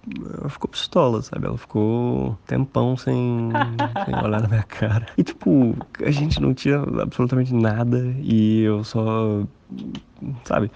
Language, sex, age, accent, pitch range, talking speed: Portuguese, male, 20-39, Brazilian, 100-120 Hz, 140 wpm